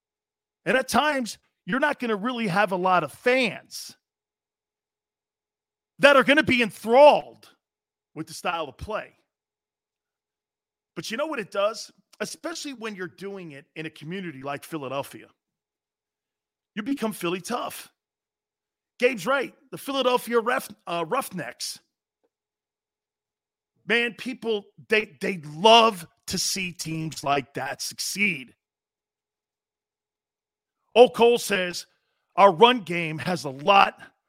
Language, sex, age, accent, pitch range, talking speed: English, male, 40-59, American, 170-240 Hz, 125 wpm